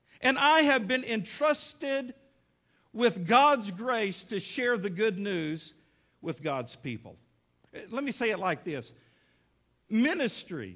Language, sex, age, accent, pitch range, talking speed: English, male, 50-69, American, 140-220 Hz, 130 wpm